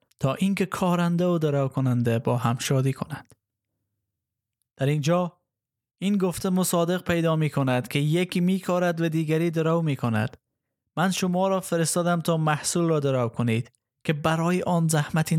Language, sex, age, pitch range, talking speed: Persian, male, 20-39, 135-170 Hz, 140 wpm